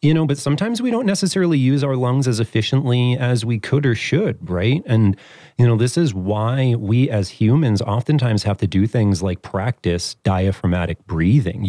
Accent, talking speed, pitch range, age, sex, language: American, 185 wpm, 95-130 Hz, 30-49, male, English